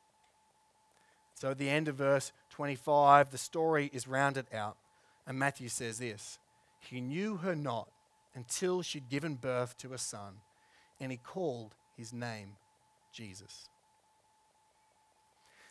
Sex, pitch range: male, 130-195 Hz